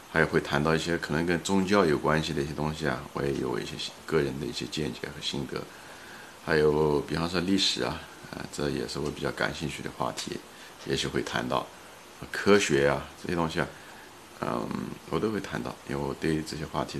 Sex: male